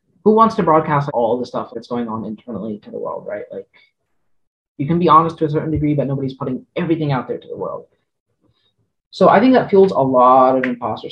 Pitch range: 115-170 Hz